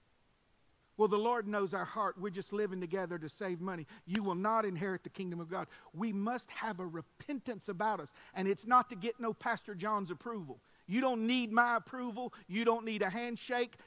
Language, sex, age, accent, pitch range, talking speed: English, male, 50-69, American, 180-240 Hz, 205 wpm